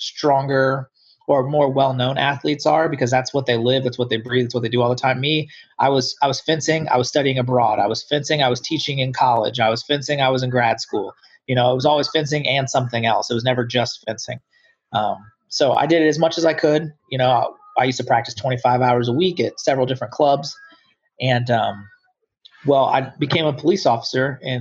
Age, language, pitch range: 30-49, English, 120-145 Hz